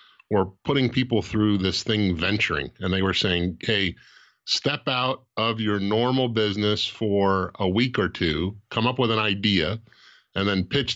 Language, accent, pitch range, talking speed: English, American, 105-120 Hz, 170 wpm